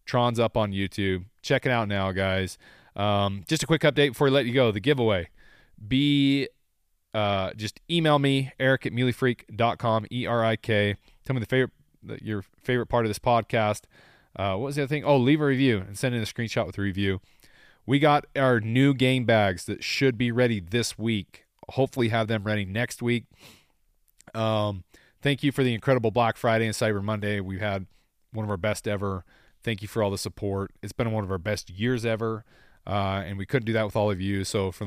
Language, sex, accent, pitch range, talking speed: English, male, American, 100-125 Hz, 205 wpm